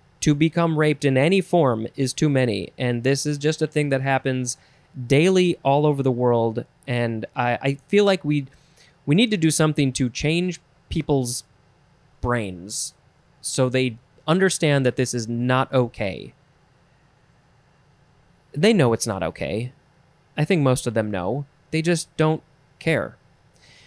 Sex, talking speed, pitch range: male, 150 wpm, 130-160 Hz